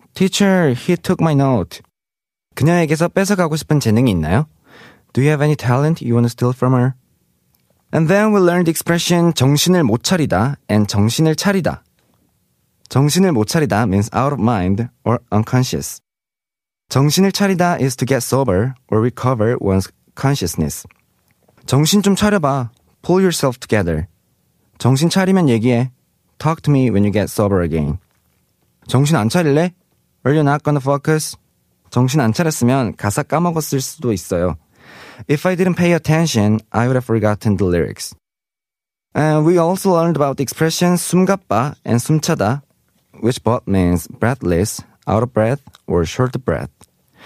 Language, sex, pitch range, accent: Korean, male, 110-160 Hz, native